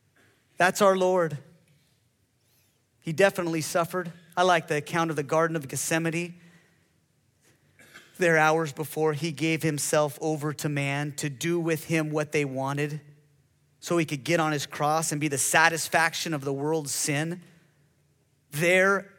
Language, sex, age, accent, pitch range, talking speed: English, male, 30-49, American, 150-195 Hz, 145 wpm